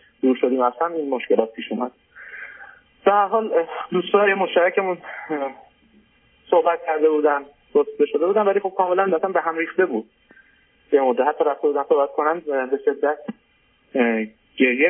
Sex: male